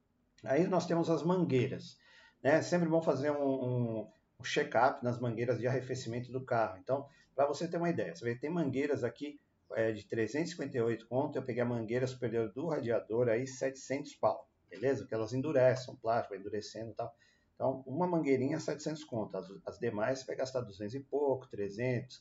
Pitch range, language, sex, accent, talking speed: 115-140 Hz, Portuguese, male, Brazilian, 180 wpm